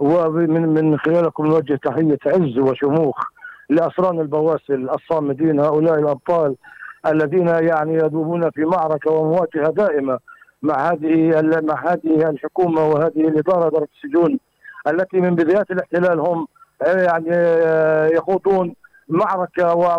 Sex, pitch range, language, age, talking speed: male, 165-200 Hz, Arabic, 50-69, 105 wpm